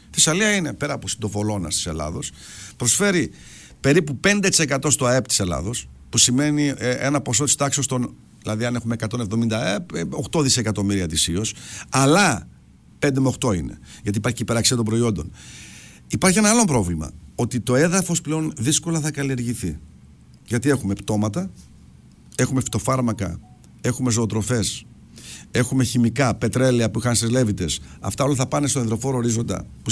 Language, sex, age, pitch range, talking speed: Greek, male, 50-69, 105-150 Hz, 150 wpm